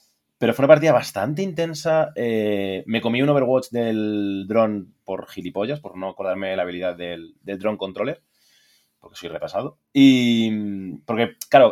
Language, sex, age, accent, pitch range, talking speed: Spanish, male, 20-39, Spanish, 95-120 Hz, 160 wpm